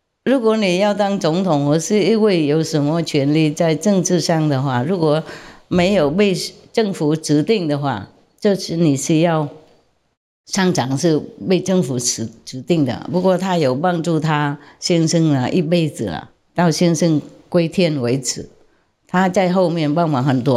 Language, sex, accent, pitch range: English, female, American, 140-180 Hz